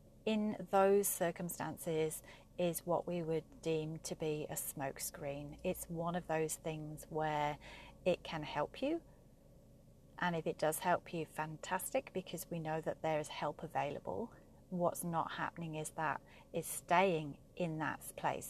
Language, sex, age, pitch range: English, female, 40-59, 160-205 Hz